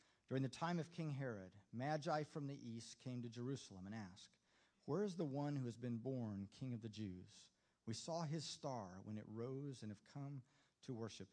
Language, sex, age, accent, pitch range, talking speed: English, male, 50-69, American, 100-130 Hz, 205 wpm